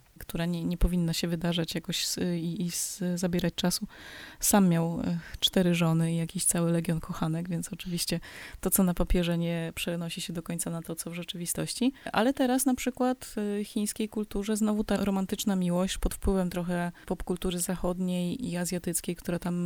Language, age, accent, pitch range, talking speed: Polish, 20-39, native, 175-200 Hz, 175 wpm